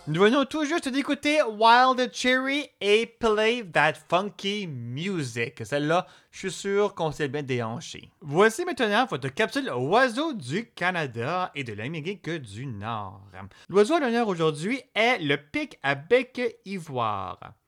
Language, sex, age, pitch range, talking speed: French, male, 30-49, 135-225 Hz, 140 wpm